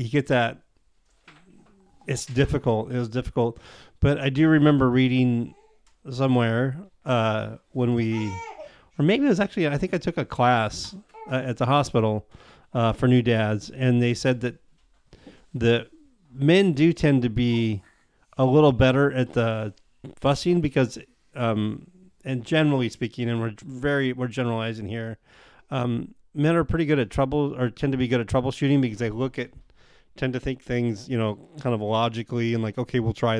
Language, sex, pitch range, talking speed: English, male, 115-135 Hz, 170 wpm